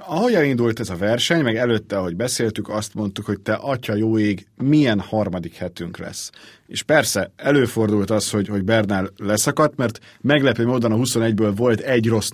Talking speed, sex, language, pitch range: 175 wpm, male, Hungarian, 105-130 Hz